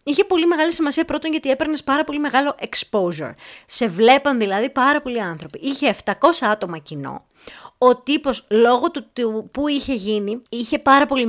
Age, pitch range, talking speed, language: 20-39, 195-285 Hz, 170 wpm, Greek